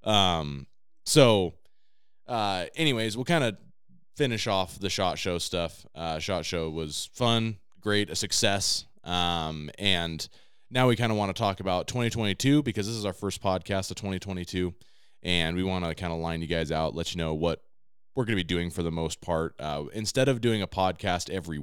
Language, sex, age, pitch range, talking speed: English, male, 20-39, 80-100 Hz, 195 wpm